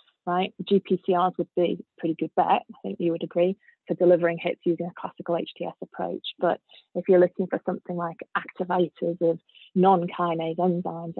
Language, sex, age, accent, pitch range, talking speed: English, female, 20-39, British, 175-200 Hz, 170 wpm